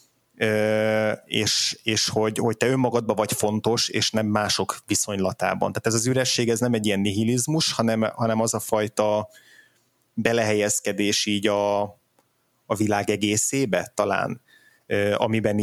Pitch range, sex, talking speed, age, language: 105-115 Hz, male, 130 wpm, 20-39, Hungarian